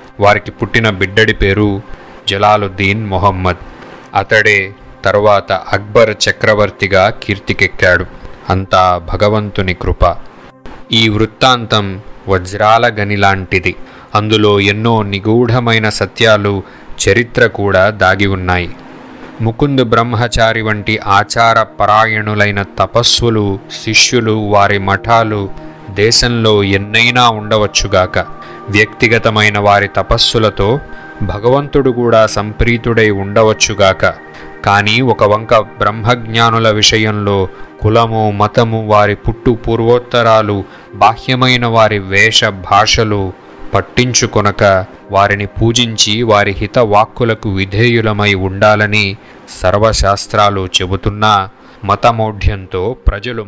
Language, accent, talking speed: Telugu, native, 80 wpm